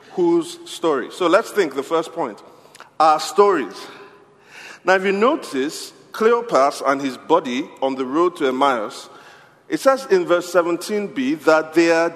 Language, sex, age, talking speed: English, male, 50-69, 155 wpm